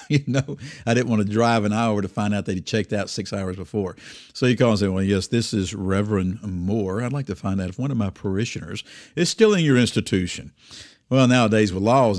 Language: English